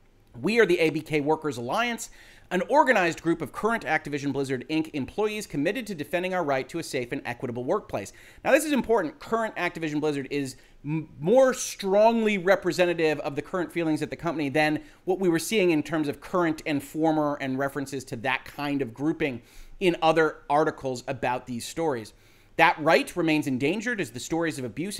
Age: 30-49